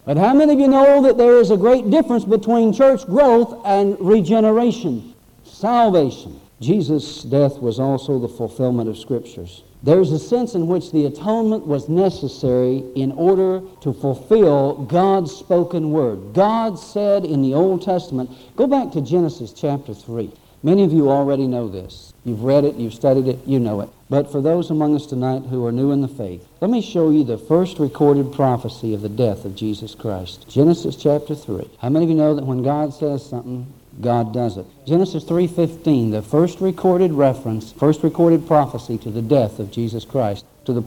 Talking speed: 190 wpm